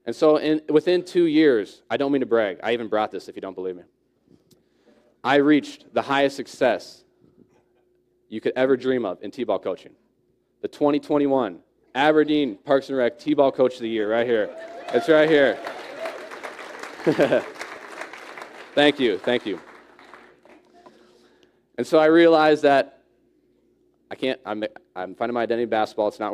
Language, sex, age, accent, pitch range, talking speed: English, male, 20-39, American, 110-140 Hz, 155 wpm